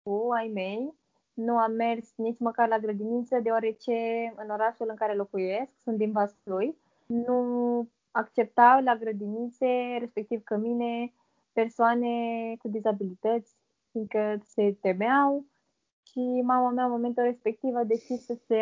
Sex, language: female, Romanian